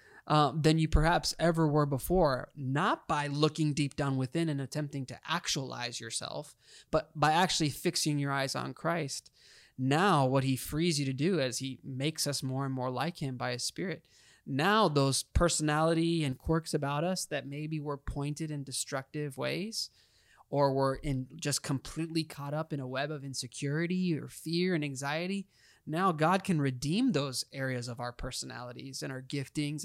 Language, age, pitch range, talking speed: English, 20-39, 130-160 Hz, 175 wpm